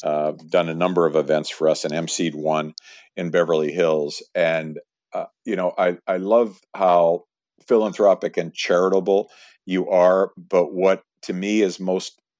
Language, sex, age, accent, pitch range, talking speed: English, male, 50-69, American, 80-95 Hz, 160 wpm